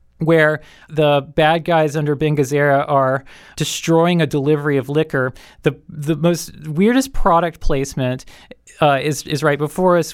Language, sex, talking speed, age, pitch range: English, male, 150 wpm, 20-39, 140-170 Hz